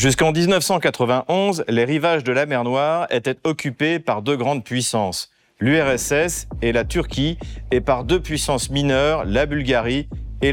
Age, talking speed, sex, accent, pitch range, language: 40-59, 150 wpm, male, French, 115-155 Hz, French